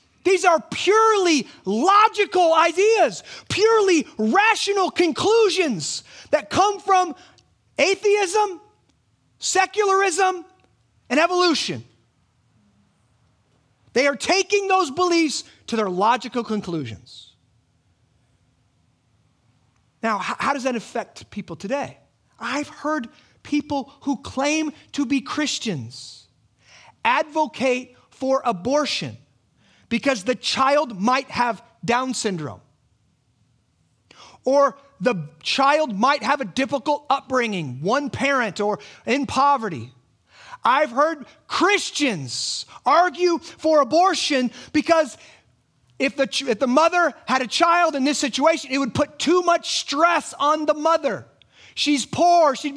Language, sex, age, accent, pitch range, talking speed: English, male, 30-49, American, 225-330 Hz, 105 wpm